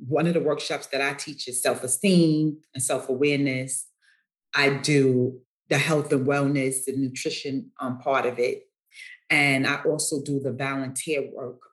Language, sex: English, female